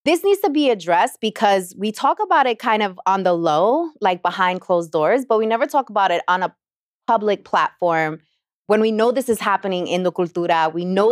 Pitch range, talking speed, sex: 175-220 Hz, 215 wpm, female